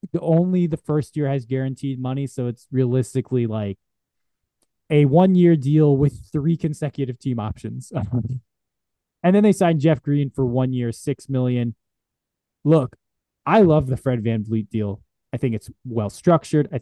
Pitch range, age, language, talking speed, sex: 115-150 Hz, 20-39, English, 155 wpm, male